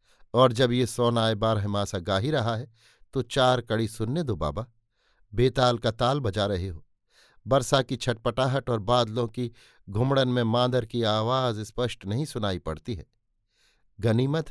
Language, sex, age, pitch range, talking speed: Hindi, male, 50-69, 115-145 Hz, 155 wpm